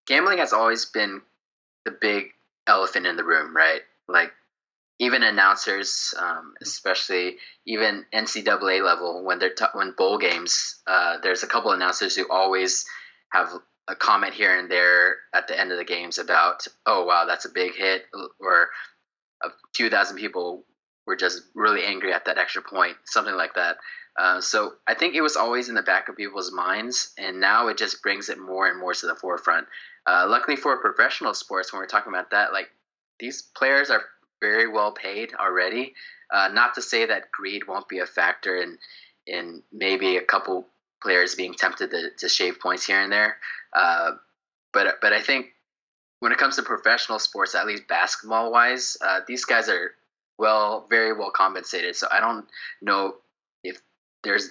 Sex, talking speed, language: male, 180 wpm, English